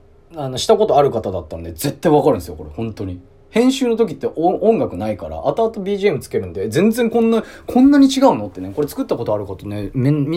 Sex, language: male, Japanese